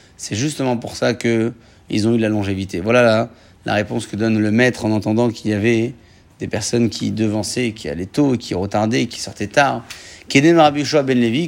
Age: 30-49